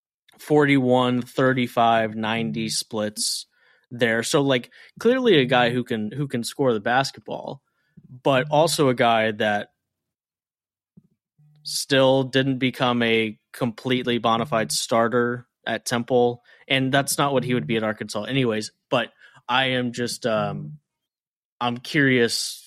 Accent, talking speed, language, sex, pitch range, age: American, 130 wpm, English, male, 115-145 Hz, 20-39